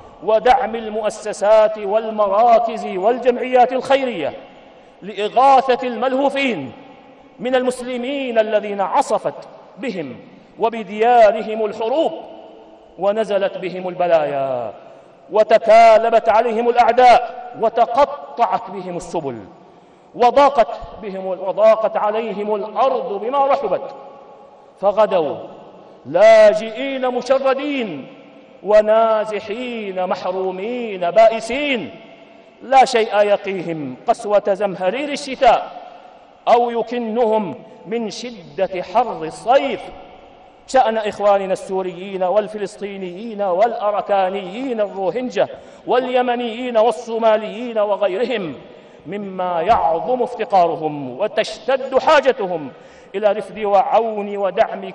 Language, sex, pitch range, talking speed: Arabic, male, 200-255 Hz, 70 wpm